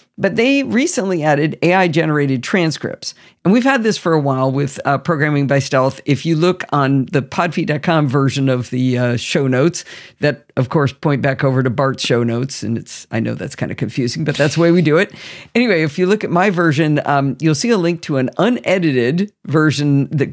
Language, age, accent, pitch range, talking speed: English, 50-69, American, 135-175 Hz, 215 wpm